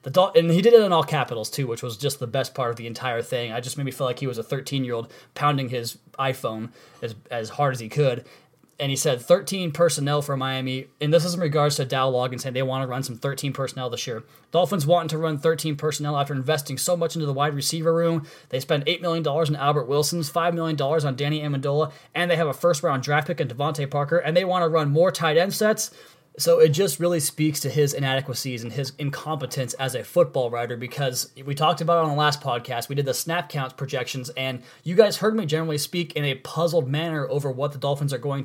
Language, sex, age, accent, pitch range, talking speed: English, male, 20-39, American, 135-160 Hz, 240 wpm